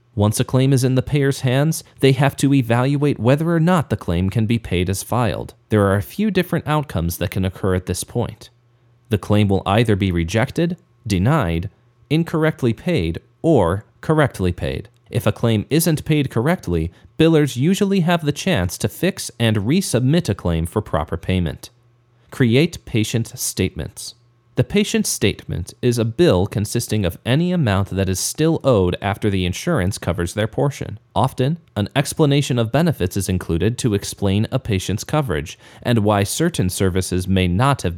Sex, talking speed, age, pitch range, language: male, 170 wpm, 30-49, 95-140 Hz, English